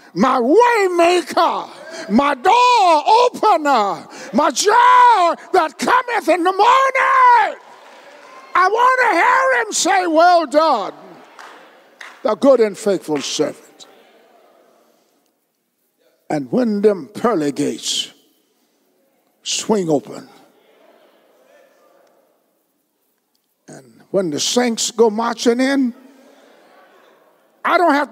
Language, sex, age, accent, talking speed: English, male, 50-69, American, 90 wpm